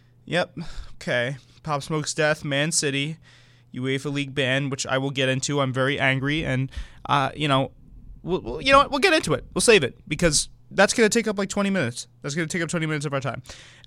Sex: male